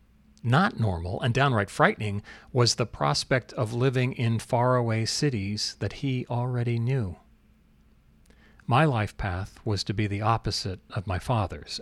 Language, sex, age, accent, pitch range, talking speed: English, male, 40-59, American, 100-120 Hz, 140 wpm